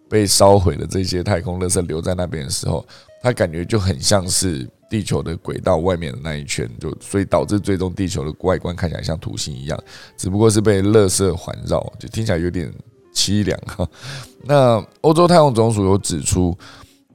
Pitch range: 90-105 Hz